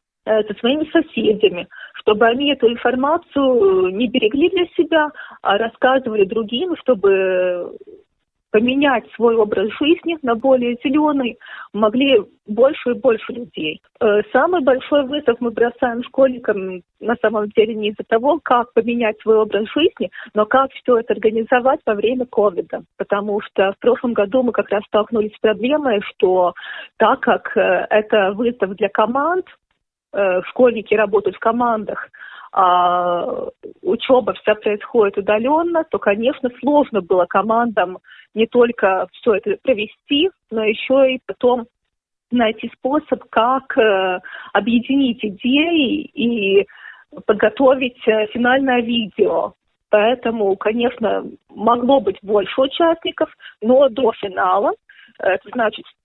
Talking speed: 120 wpm